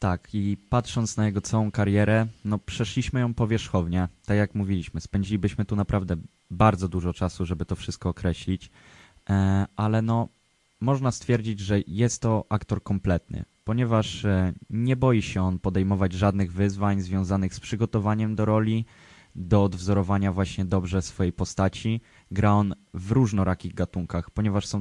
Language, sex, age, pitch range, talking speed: Polish, male, 20-39, 95-120 Hz, 145 wpm